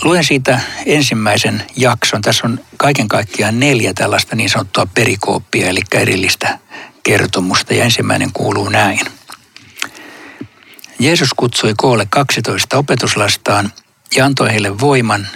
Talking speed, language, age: 115 wpm, Finnish, 60-79